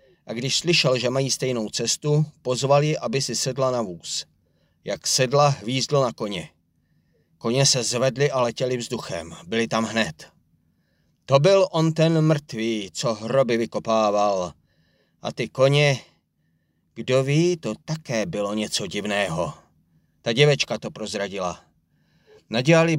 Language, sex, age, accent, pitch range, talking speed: Czech, male, 40-59, native, 115-150 Hz, 130 wpm